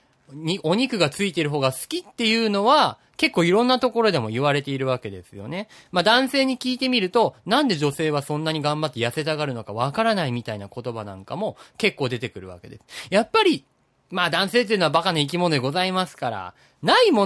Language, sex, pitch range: Japanese, male, 125-205 Hz